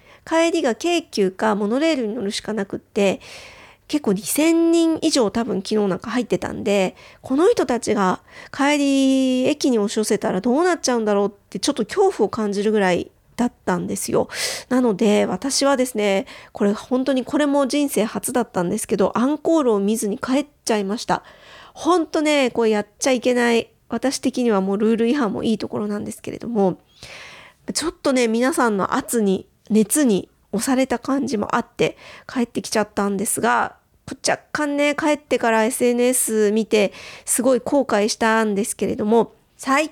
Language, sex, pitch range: Japanese, female, 210-285 Hz